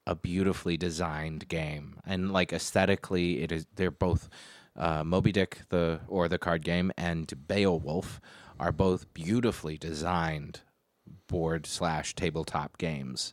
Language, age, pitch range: English, 30-49, 80-95 Hz